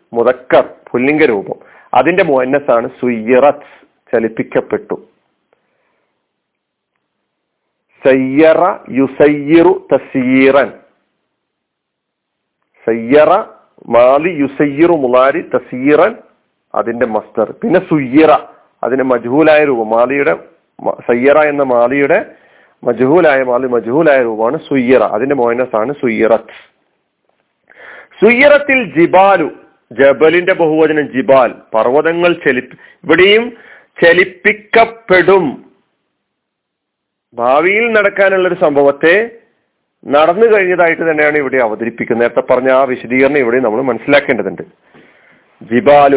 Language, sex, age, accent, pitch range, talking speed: Malayalam, male, 40-59, native, 130-180 Hz, 75 wpm